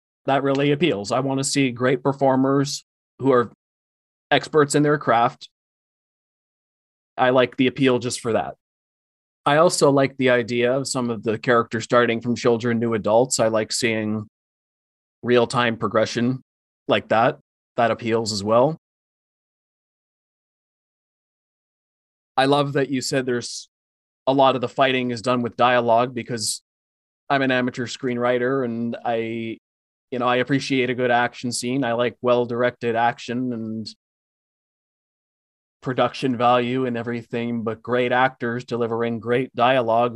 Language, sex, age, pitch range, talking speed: English, male, 20-39, 115-130 Hz, 140 wpm